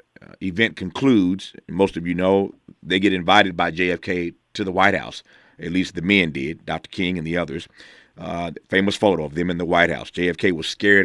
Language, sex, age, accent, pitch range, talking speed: English, male, 40-59, American, 85-100 Hz, 205 wpm